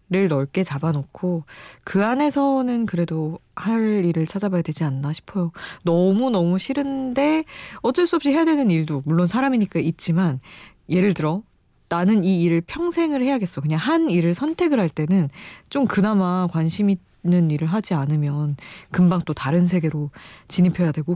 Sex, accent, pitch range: female, native, 155-210 Hz